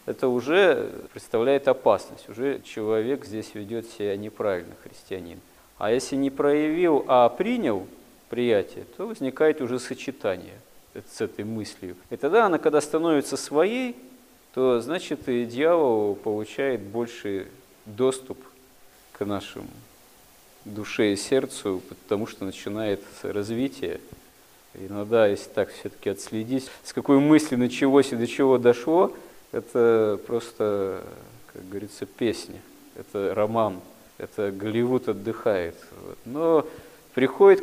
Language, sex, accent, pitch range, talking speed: Russian, male, native, 105-135 Hz, 115 wpm